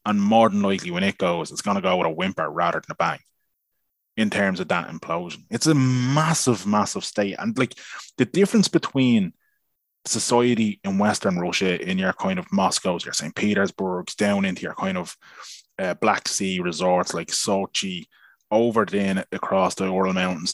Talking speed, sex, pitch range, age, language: 180 wpm, male, 95-145 Hz, 20-39, English